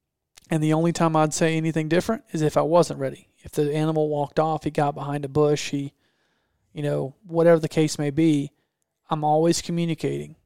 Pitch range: 145-160 Hz